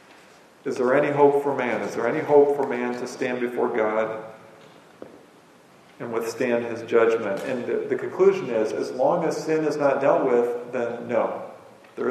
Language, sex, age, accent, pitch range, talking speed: English, male, 40-59, American, 120-145 Hz, 180 wpm